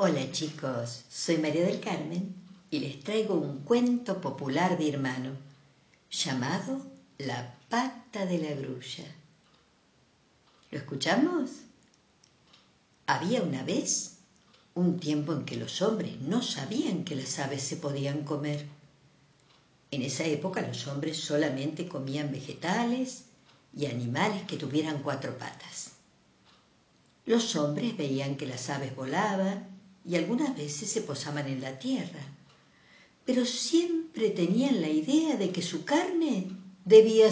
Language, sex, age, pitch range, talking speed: Spanish, female, 60-79, 140-200 Hz, 125 wpm